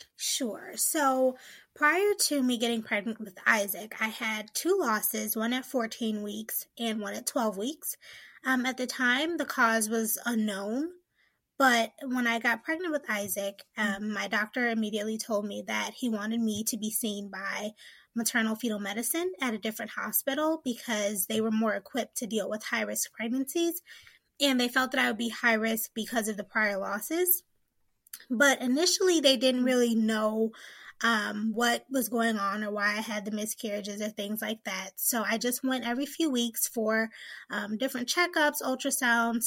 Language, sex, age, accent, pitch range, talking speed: English, female, 20-39, American, 215-255 Hz, 175 wpm